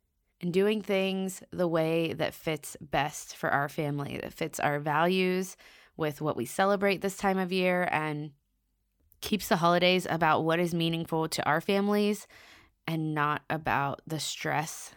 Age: 20-39